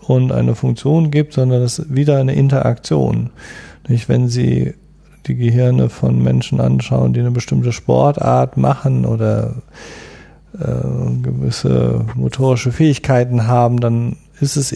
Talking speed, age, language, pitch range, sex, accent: 120 wpm, 40-59, German, 110-140 Hz, male, German